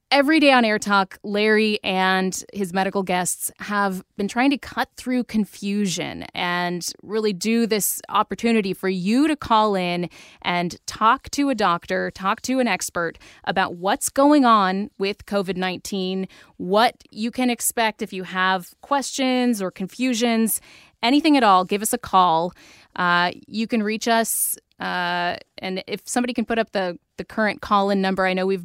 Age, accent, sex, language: 20-39, American, female, English